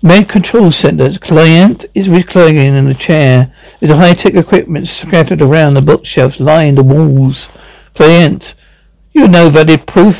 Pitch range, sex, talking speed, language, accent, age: 150-205 Hz, male, 155 wpm, English, British, 60-79